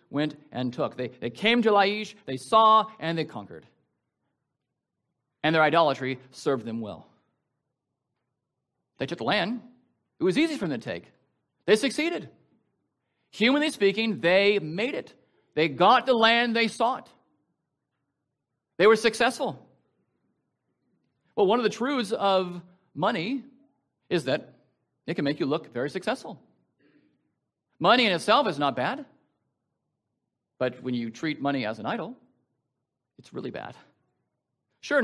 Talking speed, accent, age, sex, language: 135 wpm, American, 40-59, male, English